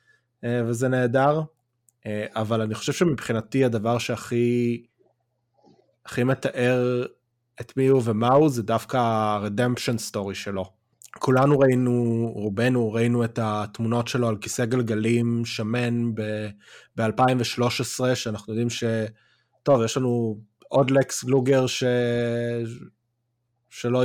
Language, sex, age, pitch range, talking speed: Hebrew, male, 20-39, 110-130 Hz, 110 wpm